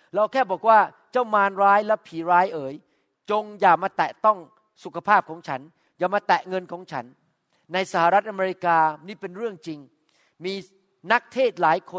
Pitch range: 180-225 Hz